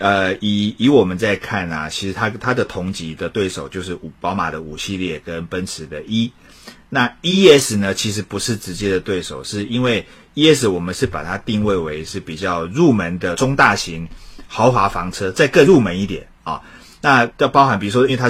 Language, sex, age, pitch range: Chinese, male, 30-49, 90-120 Hz